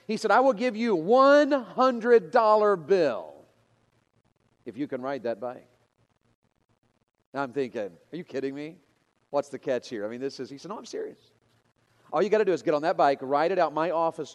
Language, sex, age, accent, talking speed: English, male, 40-59, American, 205 wpm